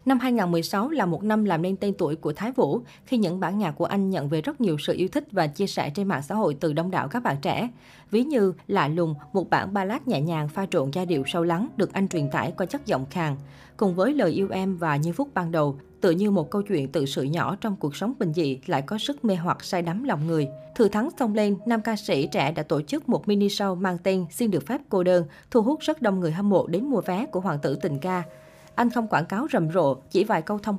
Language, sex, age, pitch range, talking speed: Vietnamese, female, 20-39, 165-220 Hz, 270 wpm